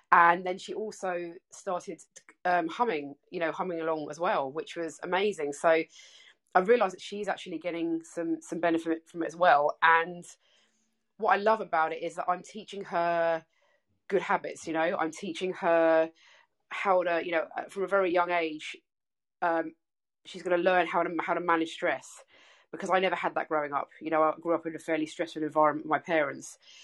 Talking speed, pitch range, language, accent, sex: 195 wpm, 165-185 Hz, English, British, female